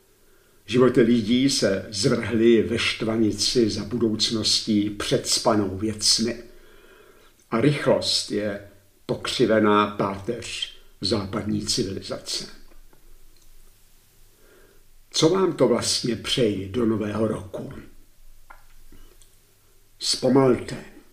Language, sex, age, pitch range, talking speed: Czech, male, 60-79, 105-125 Hz, 80 wpm